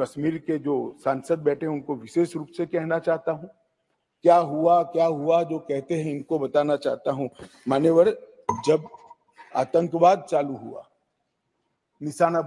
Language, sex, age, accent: Hindi, male, 50-69, native